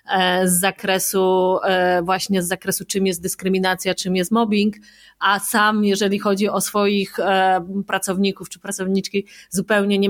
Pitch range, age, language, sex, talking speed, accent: 195-225 Hz, 30-49, Polish, female, 130 wpm, native